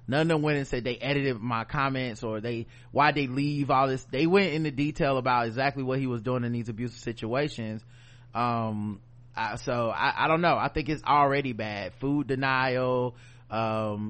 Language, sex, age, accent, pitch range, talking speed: English, male, 20-39, American, 120-145 Hz, 190 wpm